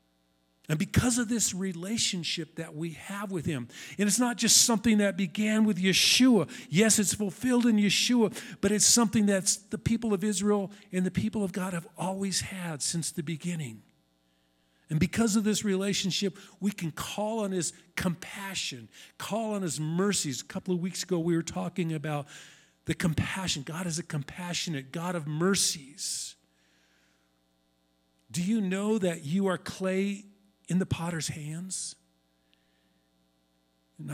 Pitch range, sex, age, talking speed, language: 145-200 Hz, male, 50-69, 155 wpm, English